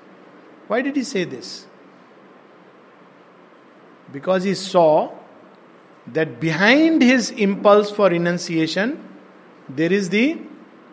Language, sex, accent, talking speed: English, male, Indian, 95 wpm